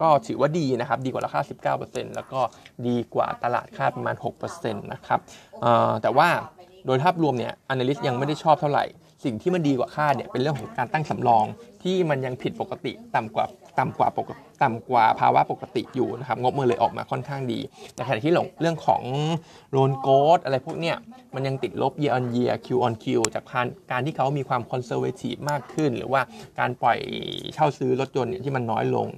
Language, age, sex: Thai, 20-39, male